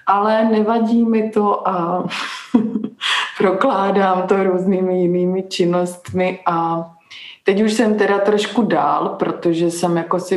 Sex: female